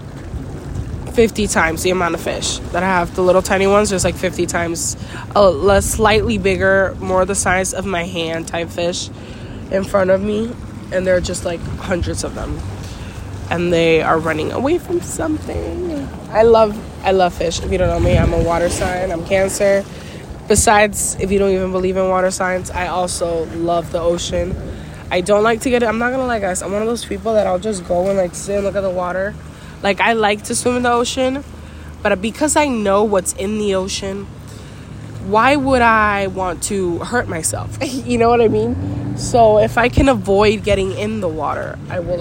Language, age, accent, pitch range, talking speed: English, 20-39, American, 165-205 Hz, 205 wpm